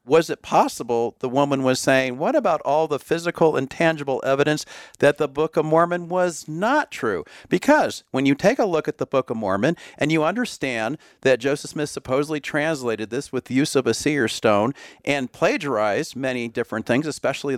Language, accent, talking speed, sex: English, American, 190 wpm, male